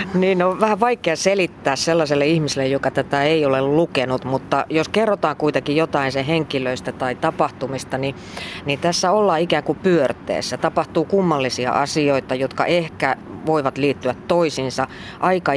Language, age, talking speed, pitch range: Finnish, 30-49, 145 wpm, 130-165 Hz